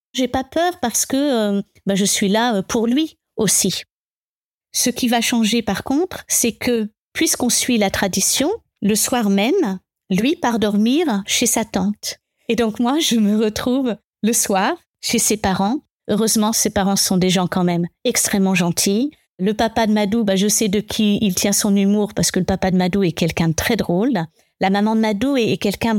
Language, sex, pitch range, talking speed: French, female, 195-245 Hz, 200 wpm